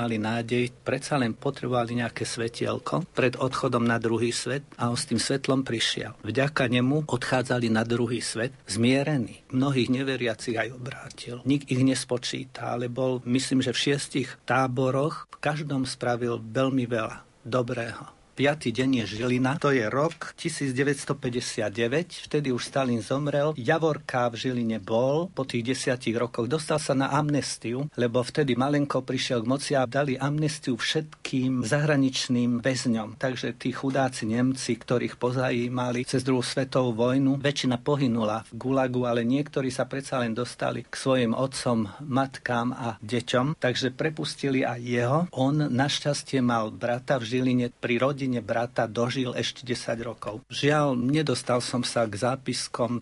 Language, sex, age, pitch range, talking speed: Slovak, male, 60-79, 120-135 Hz, 145 wpm